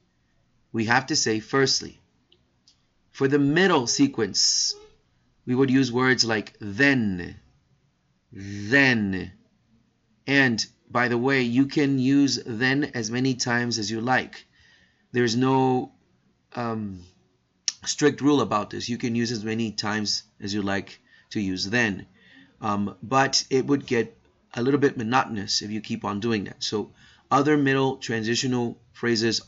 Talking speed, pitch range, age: 140 wpm, 105-130 Hz, 30-49